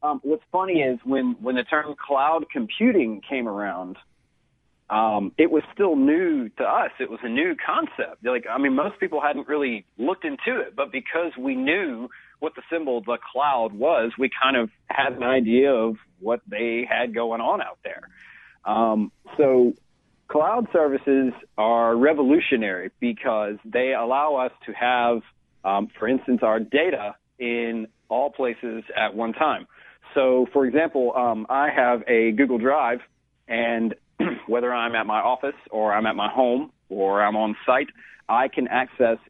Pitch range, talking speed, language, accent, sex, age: 110-140 Hz, 165 wpm, English, American, male, 40-59